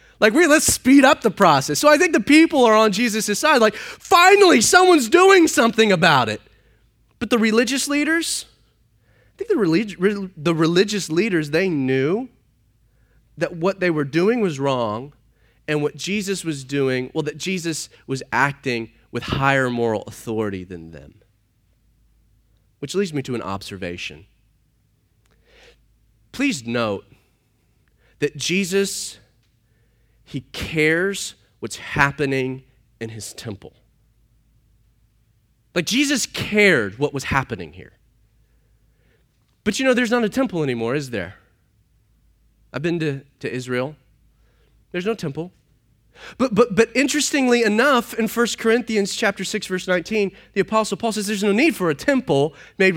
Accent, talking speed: American, 145 wpm